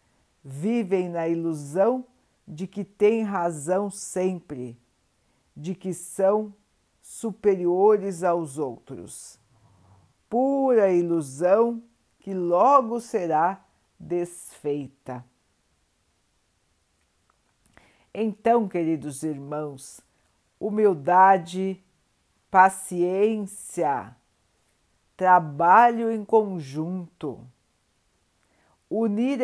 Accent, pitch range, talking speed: Brazilian, 140-210 Hz, 60 wpm